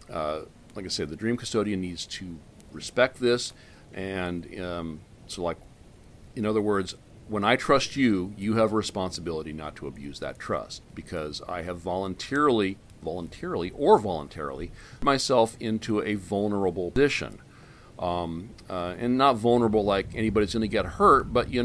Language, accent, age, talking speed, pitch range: English, American, 40-59, 155 wpm, 85-110 Hz